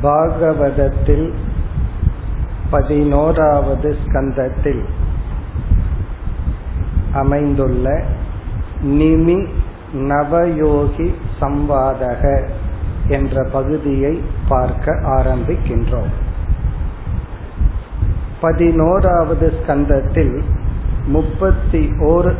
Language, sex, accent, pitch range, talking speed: Tamil, male, native, 125-160 Hz, 40 wpm